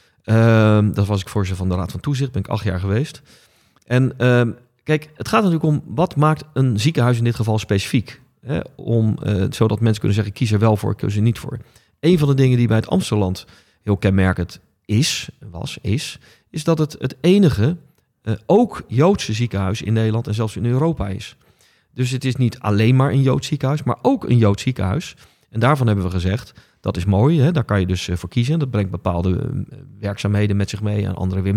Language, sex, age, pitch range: Dutch, male, 40-59, 105-140 Hz